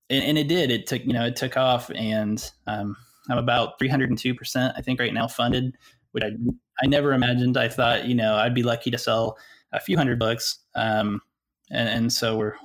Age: 20-39